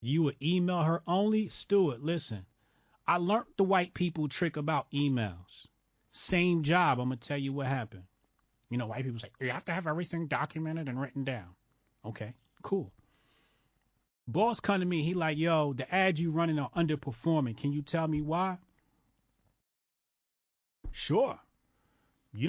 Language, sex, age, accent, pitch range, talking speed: English, male, 30-49, American, 125-175 Hz, 160 wpm